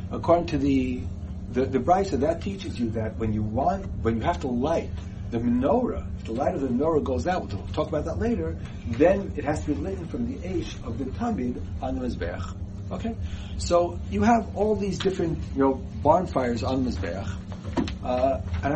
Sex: male